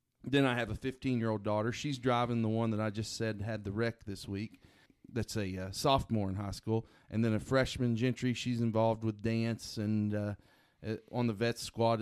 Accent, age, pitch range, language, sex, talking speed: American, 30-49, 105-125 Hz, English, male, 215 wpm